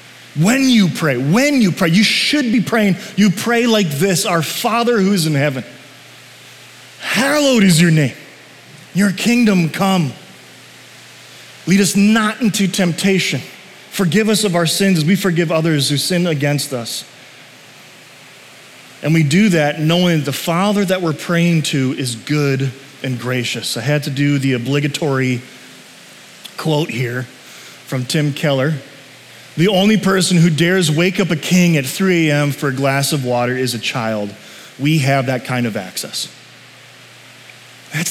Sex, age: male, 30-49